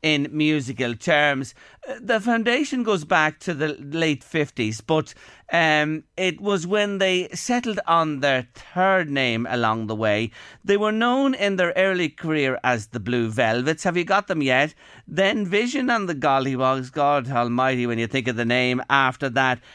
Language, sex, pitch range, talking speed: English, male, 125-180 Hz, 170 wpm